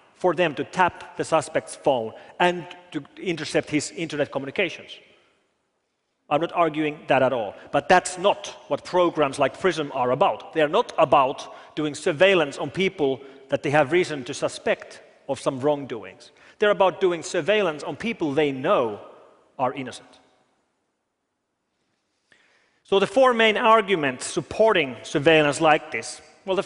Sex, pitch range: male, 145-185 Hz